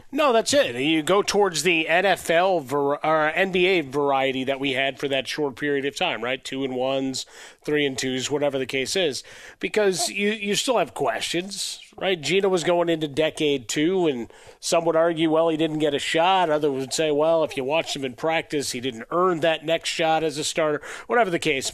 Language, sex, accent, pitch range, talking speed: English, male, American, 140-175 Hz, 215 wpm